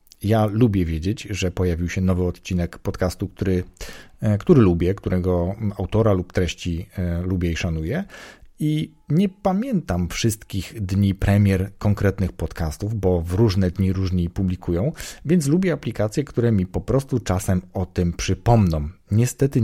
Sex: male